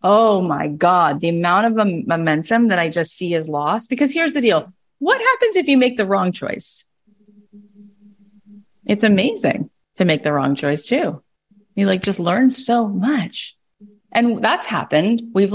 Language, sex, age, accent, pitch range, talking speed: English, female, 30-49, American, 155-205 Hz, 165 wpm